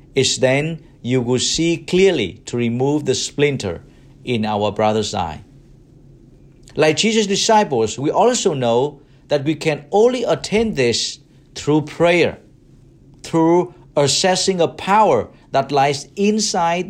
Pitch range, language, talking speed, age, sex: 135-170 Hz, English, 125 wpm, 50-69, male